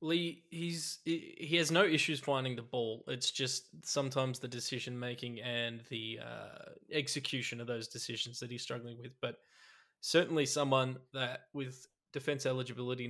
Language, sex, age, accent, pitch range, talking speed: English, male, 20-39, Australian, 125-150 Hz, 145 wpm